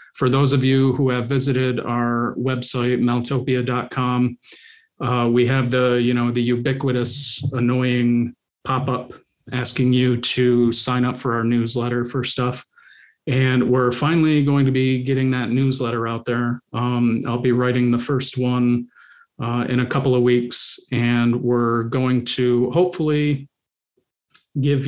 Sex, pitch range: male, 120-135 Hz